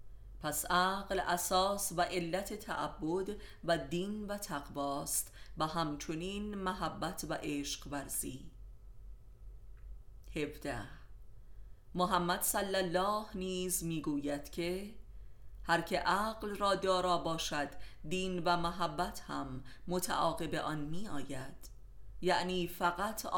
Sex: female